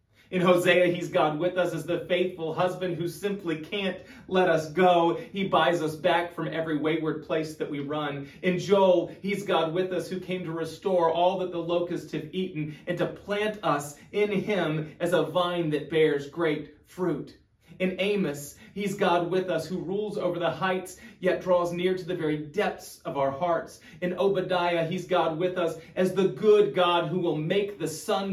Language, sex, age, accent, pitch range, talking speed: English, male, 30-49, American, 155-185 Hz, 195 wpm